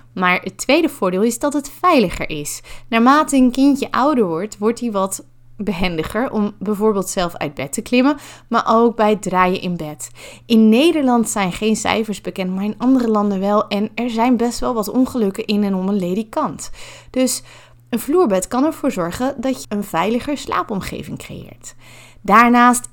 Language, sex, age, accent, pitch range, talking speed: Dutch, female, 20-39, Dutch, 195-250 Hz, 180 wpm